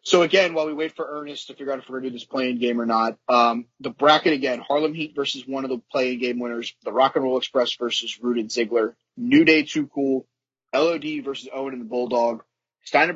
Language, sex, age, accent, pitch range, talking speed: English, male, 30-49, American, 120-145 Hz, 240 wpm